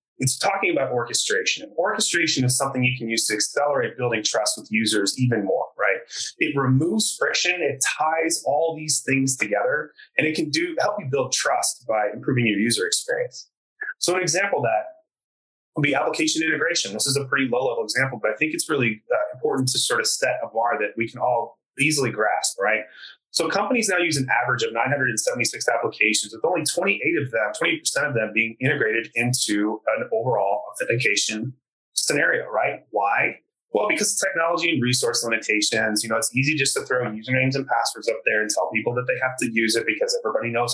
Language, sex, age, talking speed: English, male, 30-49, 195 wpm